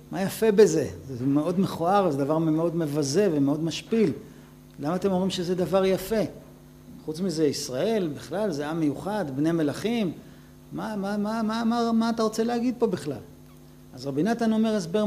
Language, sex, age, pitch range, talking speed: Hebrew, male, 50-69, 140-195 Hz, 175 wpm